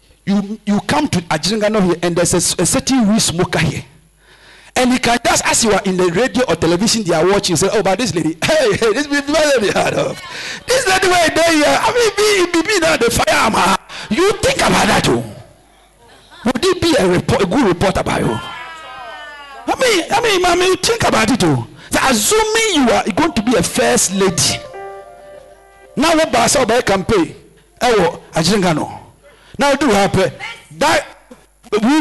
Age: 50-69